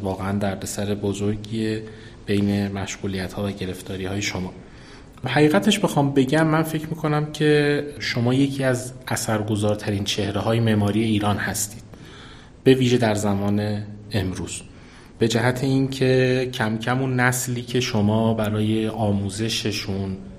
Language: Persian